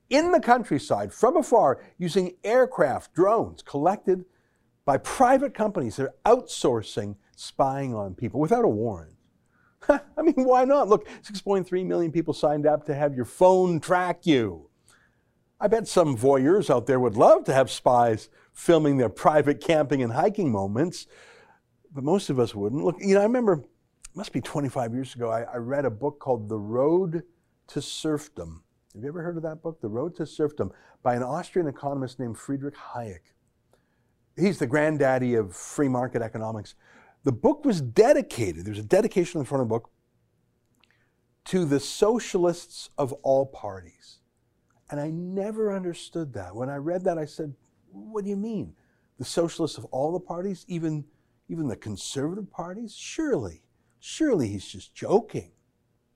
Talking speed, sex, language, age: 165 wpm, male, English, 50-69